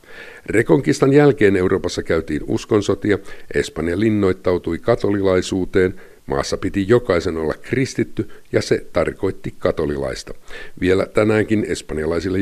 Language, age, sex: Finnish, 50-69, male